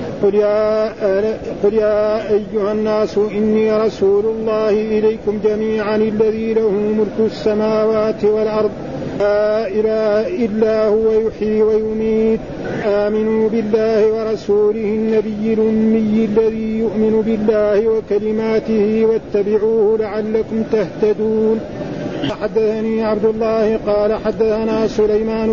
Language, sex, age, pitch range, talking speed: Arabic, male, 50-69, 215-220 Hz, 95 wpm